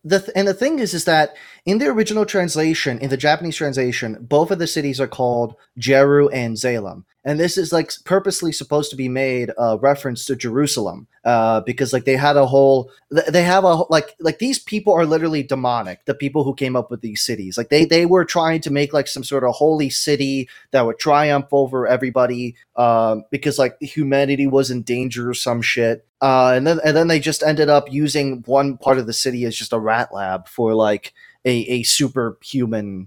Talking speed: 205 wpm